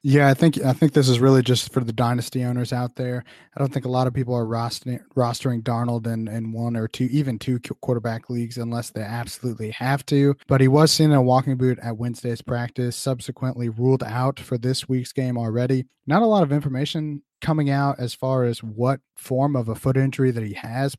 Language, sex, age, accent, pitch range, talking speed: English, male, 20-39, American, 120-145 Hz, 225 wpm